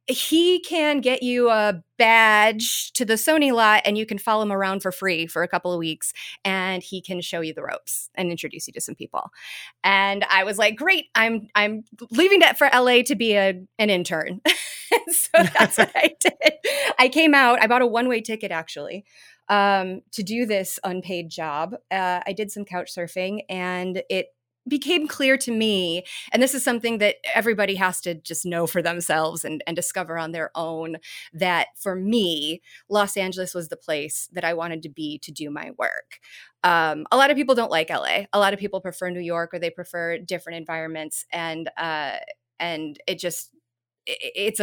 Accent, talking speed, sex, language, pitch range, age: American, 195 wpm, female, English, 170-220 Hz, 30-49